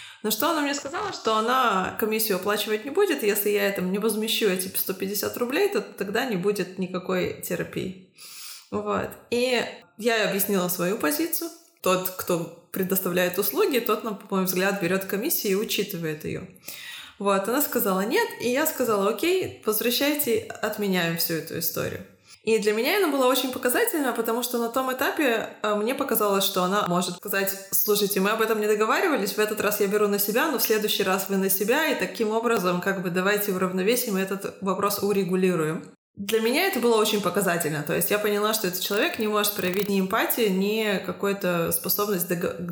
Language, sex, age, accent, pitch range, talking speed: Russian, female, 20-39, native, 185-235 Hz, 175 wpm